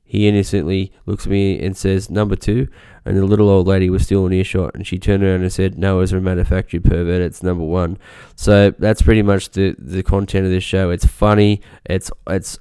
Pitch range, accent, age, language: 95-110 Hz, Australian, 10-29, English